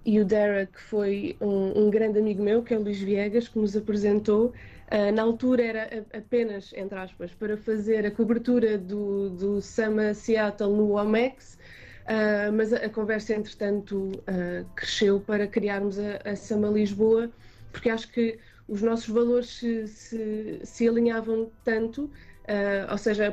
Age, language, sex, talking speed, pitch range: 20-39, Portuguese, female, 155 wpm, 210-230 Hz